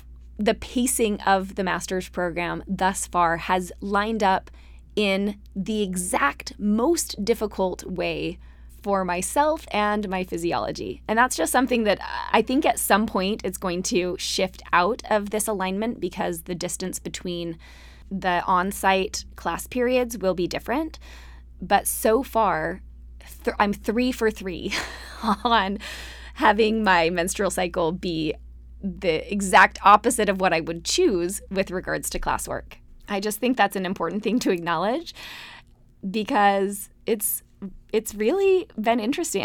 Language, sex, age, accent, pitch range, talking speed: English, female, 20-39, American, 180-215 Hz, 140 wpm